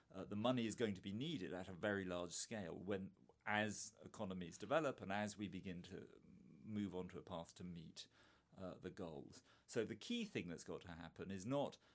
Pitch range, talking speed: 95-115 Hz, 210 wpm